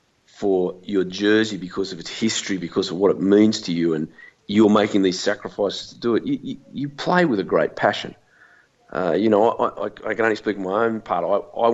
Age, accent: 40-59, Australian